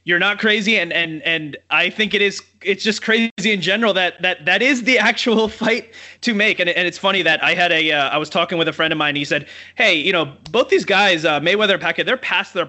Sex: male